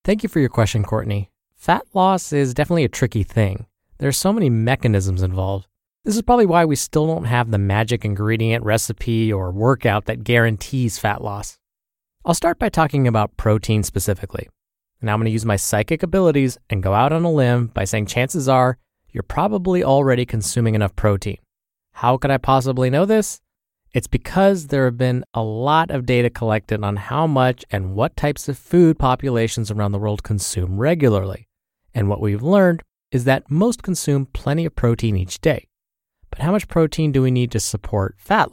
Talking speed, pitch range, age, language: 185 wpm, 105-155 Hz, 20-39, English